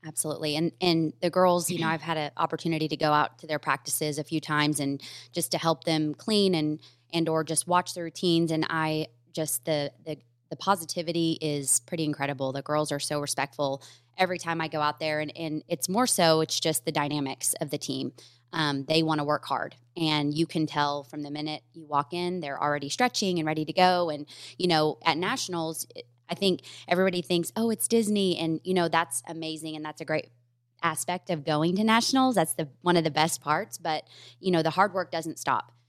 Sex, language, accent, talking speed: female, English, American, 215 wpm